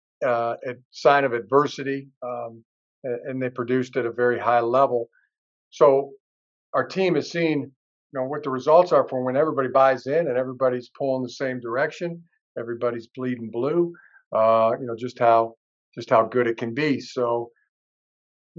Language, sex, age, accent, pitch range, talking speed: English, male, 50-69, American, 115-135 Hz, 170 wpm